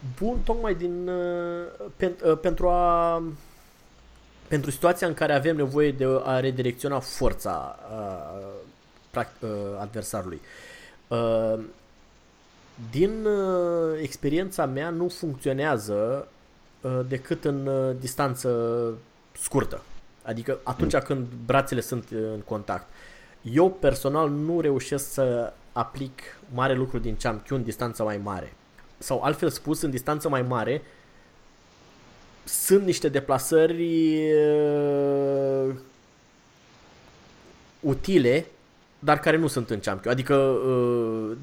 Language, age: Romanian, 20-39